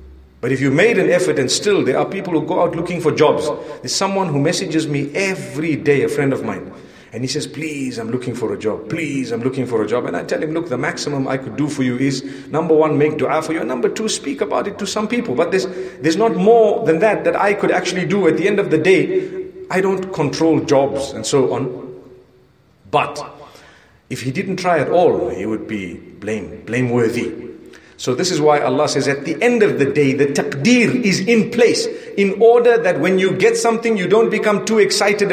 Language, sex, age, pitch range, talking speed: English, male, 50-69, 135-195 Hz, 235 wpm